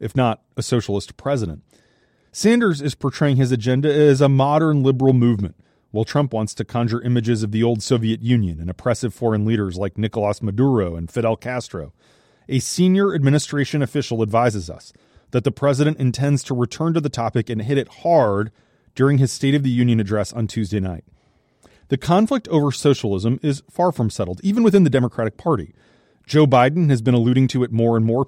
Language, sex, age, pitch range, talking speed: English, male, 30-49, 115-150 Hz, 185 wpm